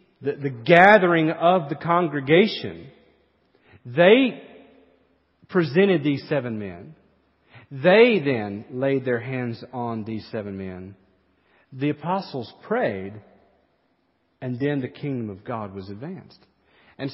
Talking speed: 110 wpm